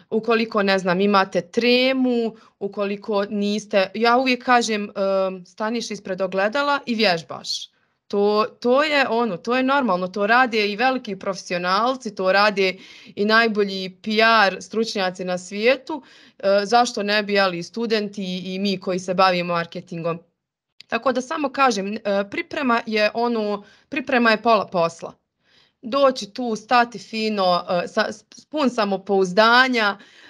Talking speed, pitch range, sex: 120 wpm, 195-245 Hz, female